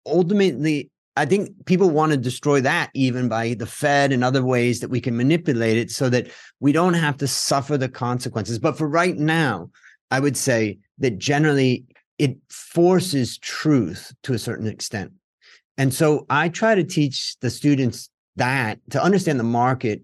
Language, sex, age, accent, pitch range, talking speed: English, male, 30-49, American, 115-145 Hz, 175 wpm